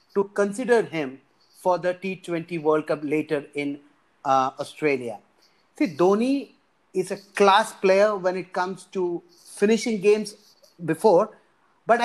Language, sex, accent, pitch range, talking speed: English, male, Indian, 170-220 Hz, 130 wpm